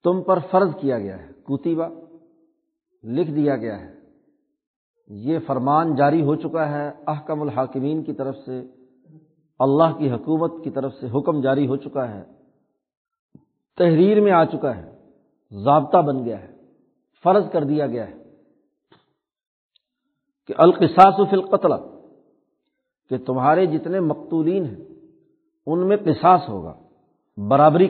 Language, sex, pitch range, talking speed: Urdu, male, 140-190 Hz, 130 wpm